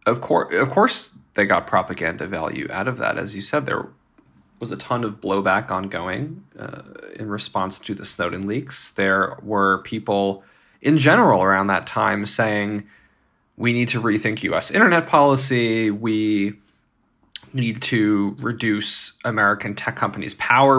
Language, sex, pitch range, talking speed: English, male, 105-125 Hz, 150 wpm